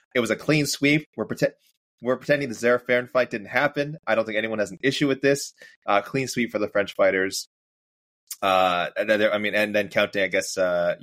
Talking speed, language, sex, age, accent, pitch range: 225 wpm, English, male, 20-39, American, 95-130 Hz